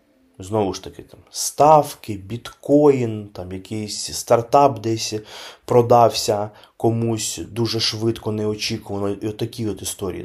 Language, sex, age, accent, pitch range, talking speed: Ukrainian, male, 20-39, native, 95-110 Hz, 100 wpm